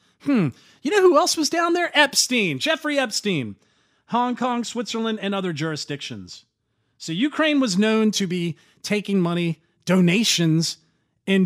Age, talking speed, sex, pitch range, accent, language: 40-59, 140 wpm, male, 160-230 Hz, American, English